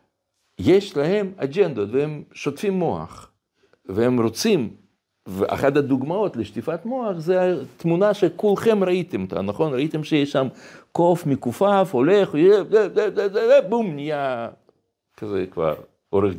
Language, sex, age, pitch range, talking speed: Hebrew, male, 60-79, 130-210 Hz, 105 wpm